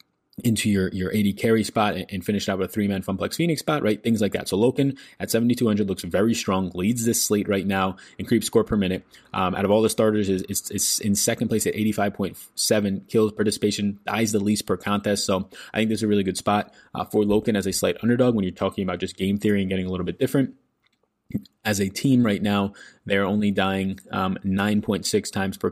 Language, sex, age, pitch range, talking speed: English, male, 20-39, 95-110 Hz, 235 wpm